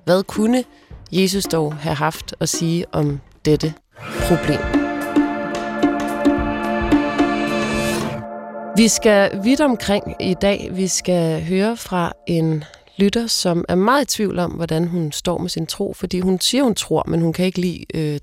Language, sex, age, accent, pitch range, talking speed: Danish, female, 30-49, native, 165-210 Hz, 150 wpm